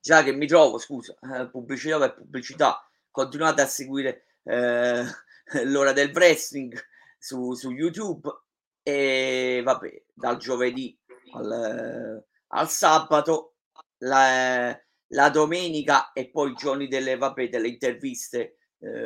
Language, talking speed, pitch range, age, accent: Italian, 125 wpm, 130-165 Hz, 30-49, native